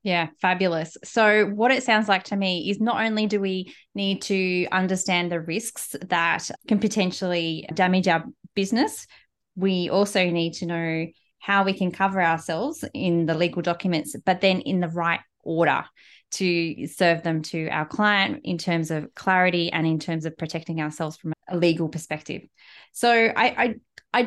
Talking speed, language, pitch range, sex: 170 wpm, English, 165-205 Hz, female